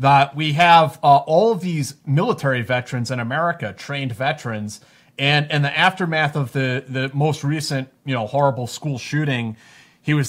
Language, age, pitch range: English, 30-49, 130-155 Hz